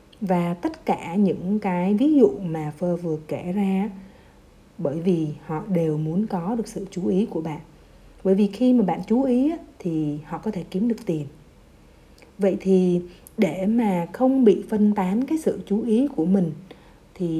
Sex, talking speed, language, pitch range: female, 185 wpm, Vietnamese, 180-230 Hz